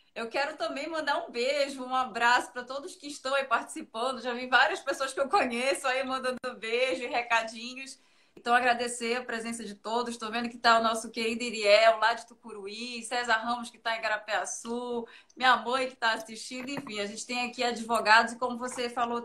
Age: 20-39